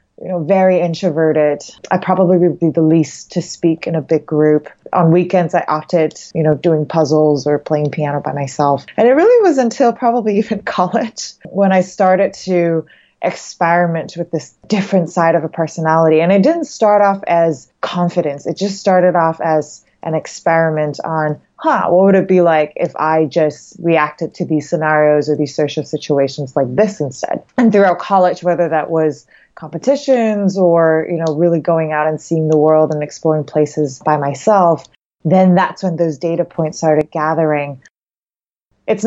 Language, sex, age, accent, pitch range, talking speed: English, female, 20-39, American, 155-185 Hz, 175 wpm